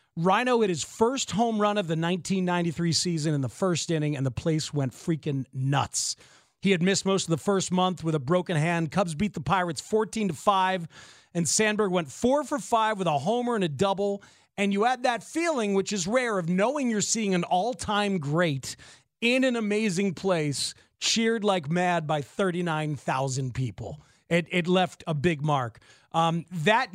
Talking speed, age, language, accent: 190 wpm, 30-49, English, American